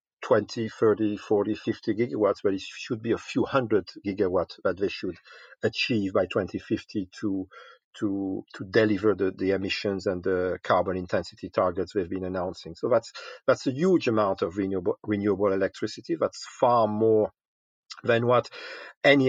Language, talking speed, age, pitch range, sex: English, 155 wpm, 50-69, 100-125 Hz, male